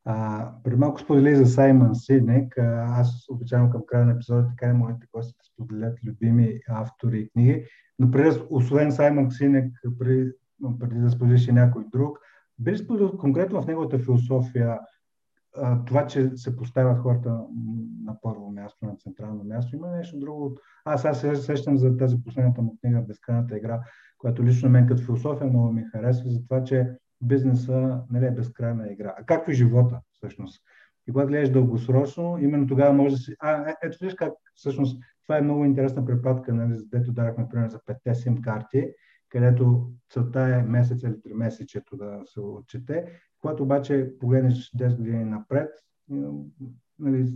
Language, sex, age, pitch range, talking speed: Bulgarian, male, 50-69, 115-135 Hz, 165 wpm